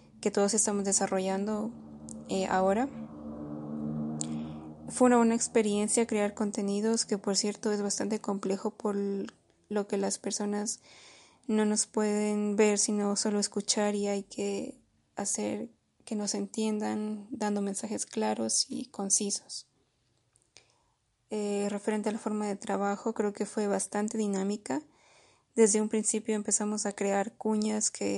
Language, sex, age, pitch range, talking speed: Spanish, female, 20-39, 195-215 Hz, 130 wpm